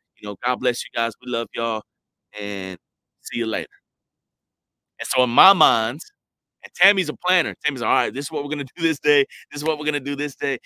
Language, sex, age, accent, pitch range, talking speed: English, male, 30-49, American, 130-170 Hz, 250 wpm